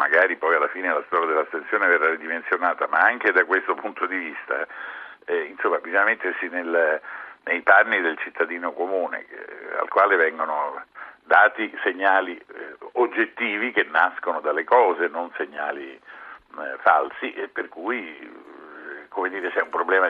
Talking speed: 150 wpm